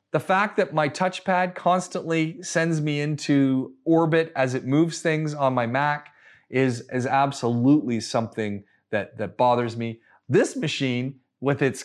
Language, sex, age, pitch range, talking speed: English, male, 30-49, 135-180 Hz, 145 wpm